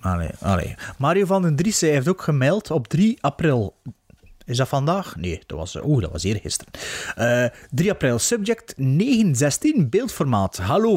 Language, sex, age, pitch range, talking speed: Dutch, male, 30-49, 120-170 Hz, 165 wpm